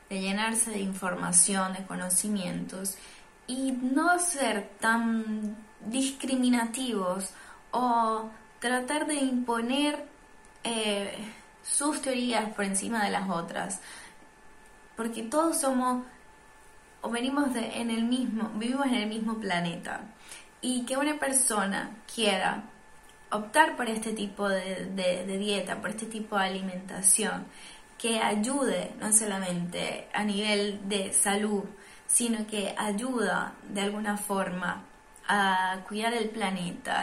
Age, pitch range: 10-29, 200-250 Hz